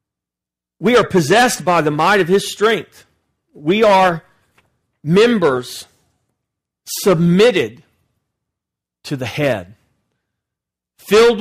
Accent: American